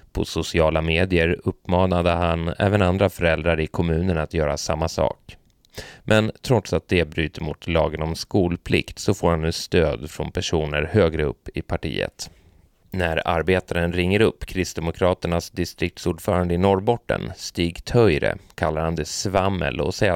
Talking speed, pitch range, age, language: 150 wpm, 80-95 Hz, 30-49, Swedish